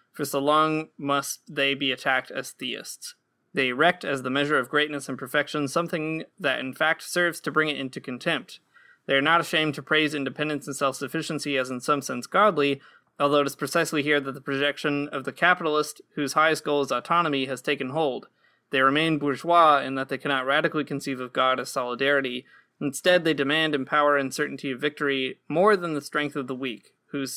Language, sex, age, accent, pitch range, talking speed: English, male, 20-39, American, 135-155 Hz, 200 wpm